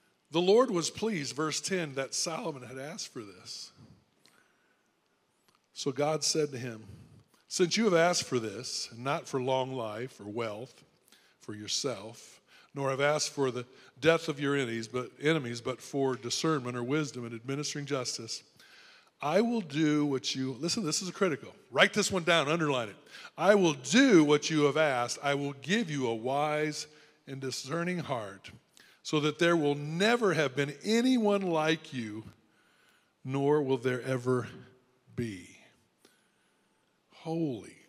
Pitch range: 130-165 Hz